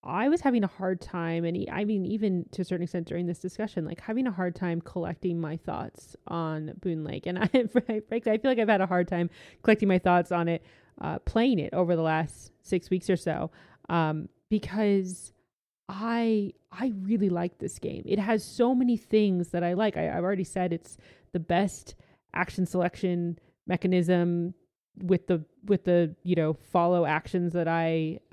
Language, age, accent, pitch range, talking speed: English, 20-39, American, 170-205 Hz, 185 wpm